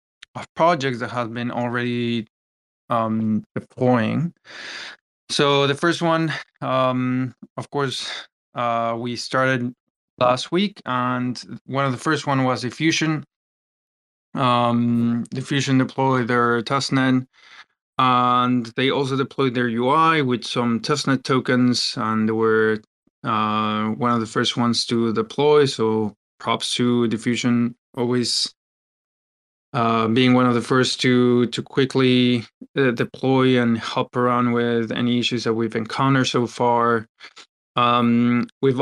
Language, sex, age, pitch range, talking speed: English, male, 20-39, 115-130 Hz, 125 wpm